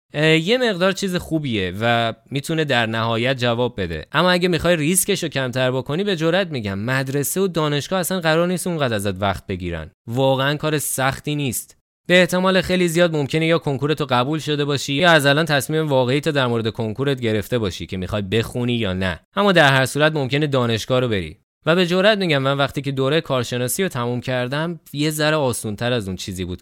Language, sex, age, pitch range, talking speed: Persian, male, 20-39, 115-155 Hz, 200 wpm